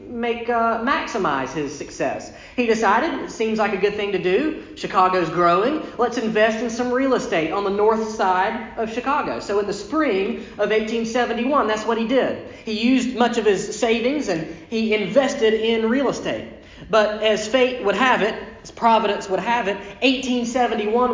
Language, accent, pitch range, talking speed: English, American, 190-230 Hz, 180 wpm